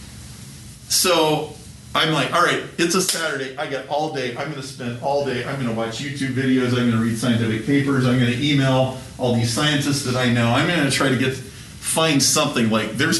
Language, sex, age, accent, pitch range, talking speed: English, male, 40-59, American, 120-155 Hz, 205 wpm